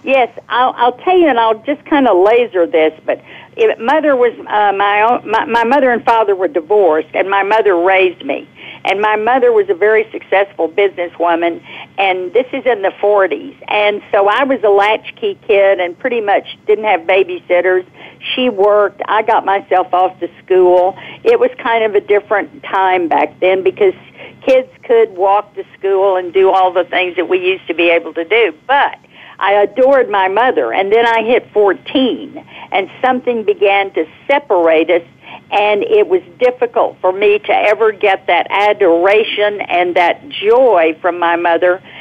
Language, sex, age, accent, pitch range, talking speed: English, female, 50-69, American, 190-255 Hz, 180 wpm